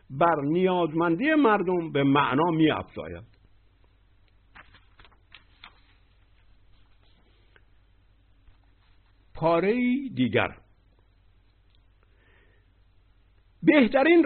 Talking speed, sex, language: 40 wpm, male, Persian